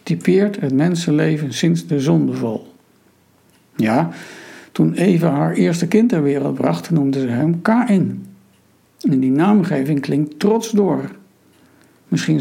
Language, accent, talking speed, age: Dutch, Dutch, 125 wpm, 60-79